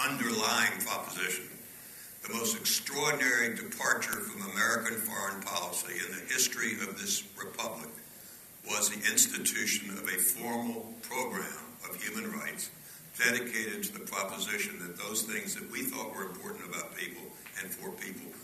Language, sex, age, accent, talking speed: English, male, 60-79, American, 140 wpm